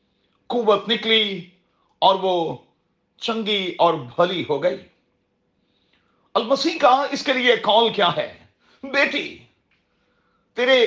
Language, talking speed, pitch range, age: Urdu, 105 wpm, 180-240 Hz, 40-59